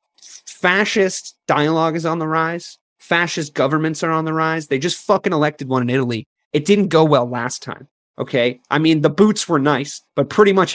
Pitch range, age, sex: 135-180 Hz, 30-49, male